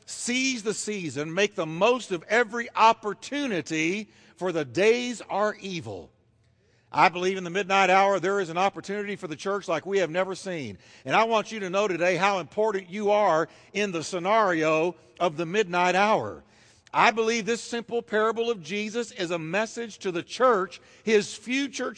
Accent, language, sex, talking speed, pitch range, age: American, English, male, 175 wpm, 160-225 Hz, 60-79